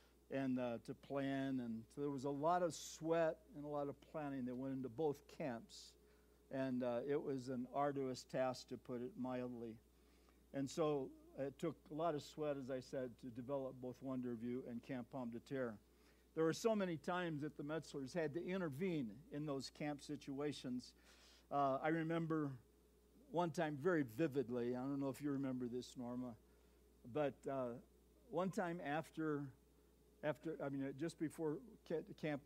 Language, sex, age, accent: English, male, 60-79, American